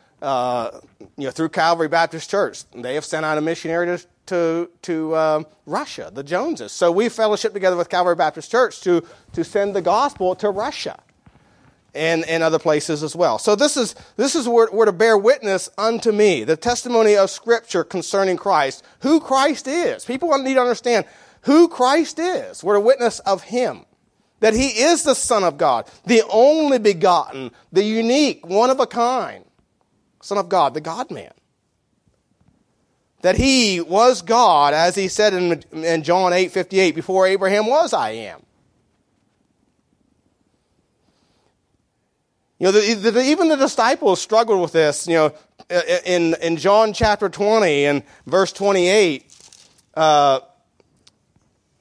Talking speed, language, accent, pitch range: 155 wpm, English, American, 165-230 Hz